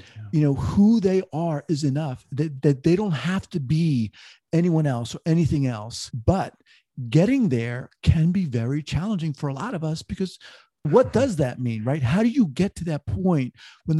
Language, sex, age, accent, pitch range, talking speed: English, male, 40-59, American, 130-165 Hz, 195 wpm